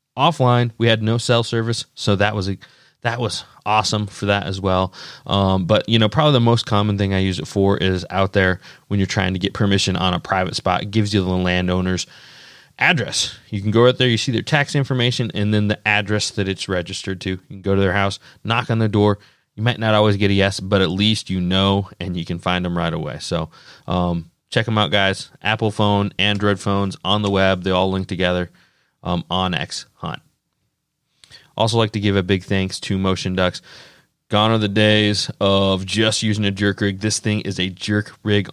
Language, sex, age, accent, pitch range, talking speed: English, male, 20-39, American, 95-110 Hz, 225 wpm